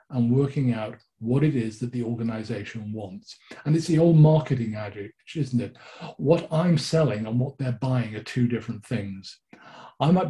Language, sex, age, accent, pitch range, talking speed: English, male, 40-59, British, 120-155 Hz, 180 wpm